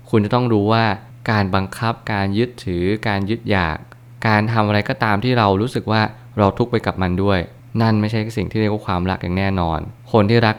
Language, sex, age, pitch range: Thai, male, 20-39, 95-115 Hz